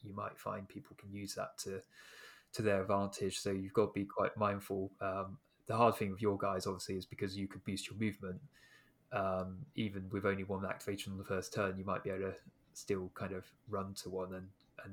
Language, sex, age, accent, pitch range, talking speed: English, male, 20-39, British, 95-105 Hz, 225 wpm